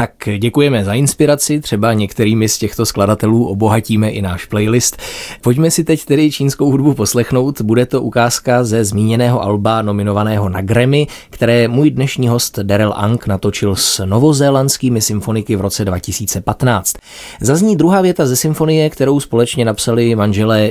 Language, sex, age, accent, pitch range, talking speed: Czech, male, 20-39, native, 105-140 Hz, 150 wpm